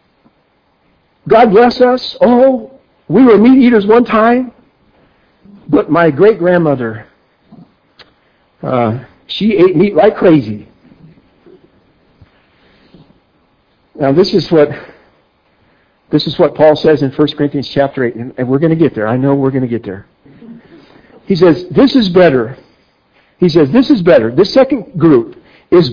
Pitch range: 155-235 Hz